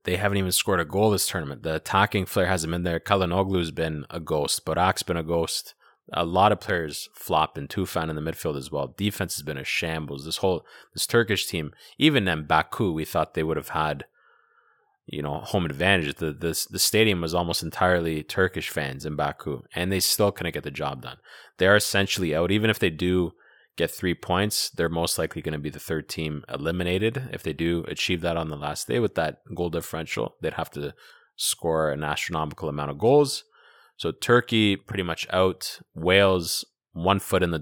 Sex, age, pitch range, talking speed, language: male, 30-49, 80-100 Hz, 205 wpm, English